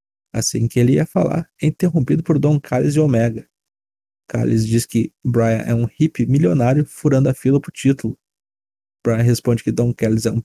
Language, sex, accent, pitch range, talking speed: Portuguese, male, Brazilian, 115-135 Hz, 180 wpm